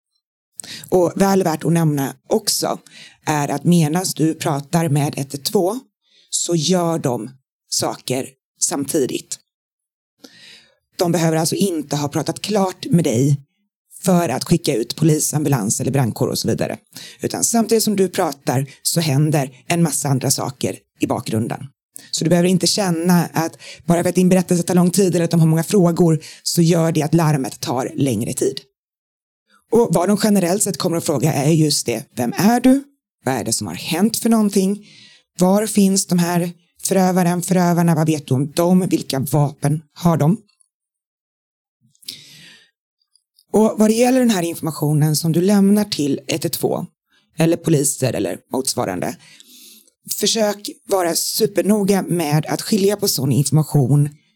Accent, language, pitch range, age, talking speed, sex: native, Swedish, 145-195 Hz, 30-49, 155 wpm, female